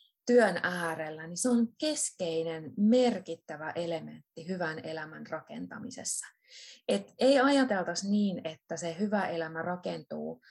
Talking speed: 115 wpm